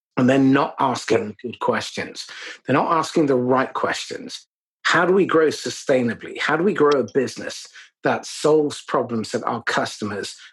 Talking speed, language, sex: 165 wpm, English, male